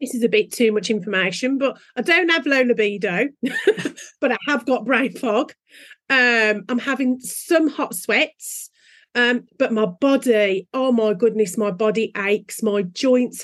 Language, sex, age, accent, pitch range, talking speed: English, female, 40-59, British, 225-280 Hz, 165 wpm